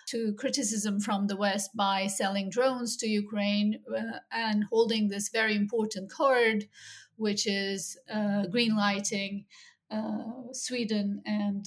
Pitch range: 205-250 Hz